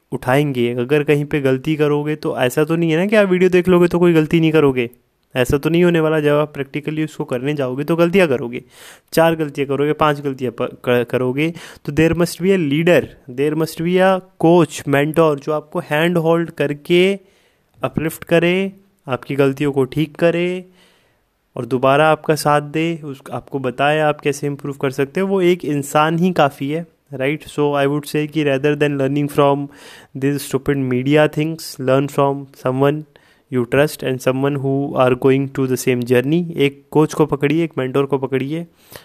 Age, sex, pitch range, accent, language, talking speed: 20-39, male, 135-155 Hz, native, Hindi, 185 wpm